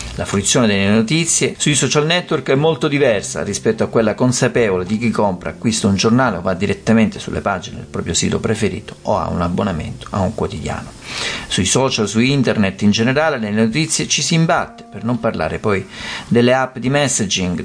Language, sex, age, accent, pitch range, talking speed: Italian, male, 50-69, native, 90-125 Hz, 185 wpm